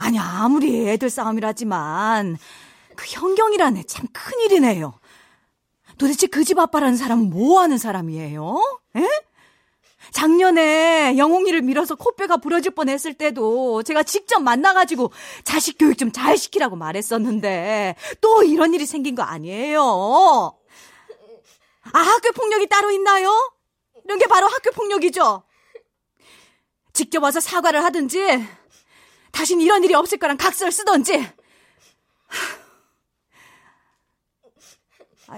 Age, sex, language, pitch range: 30-49, female, Korean, 255-380 Hz